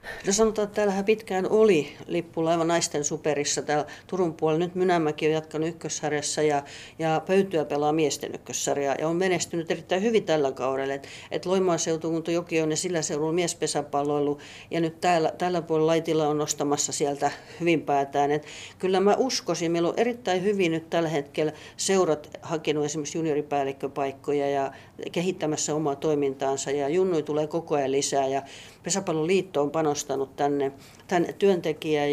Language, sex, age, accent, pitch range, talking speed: Finnish, female, 50-69, native, 145-170 Hz, 150 wpm